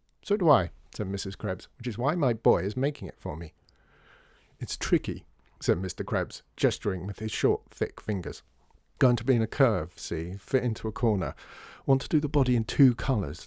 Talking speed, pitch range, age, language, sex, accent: 205 wpm, 85-125 Hz, 50-69, English, male, British